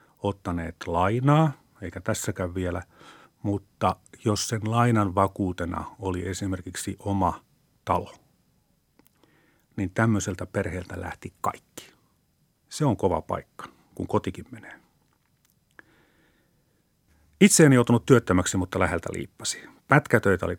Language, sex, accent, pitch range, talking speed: Finnish, male, native, 95-125 Hz, 105 wpm